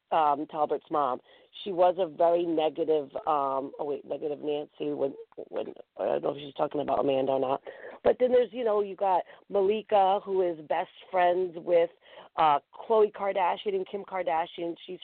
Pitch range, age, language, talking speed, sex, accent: 145-195 Hz, 40-59, English, 180 wpm, female, American